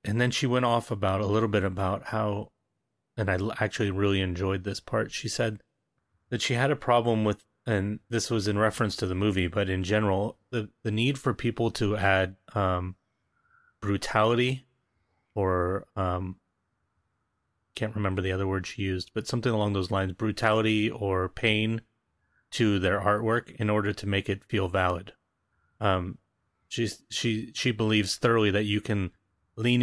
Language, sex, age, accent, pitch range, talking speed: English, male, 30-49, American, 95-115 Hz, 165 wpm